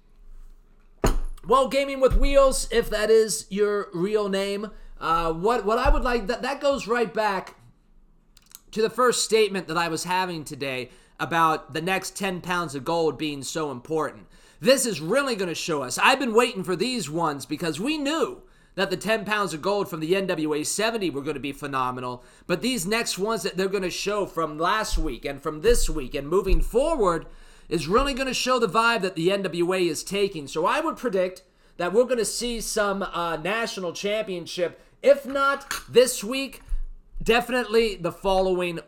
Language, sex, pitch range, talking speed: English, male, 160-230 Hz, 190 wpm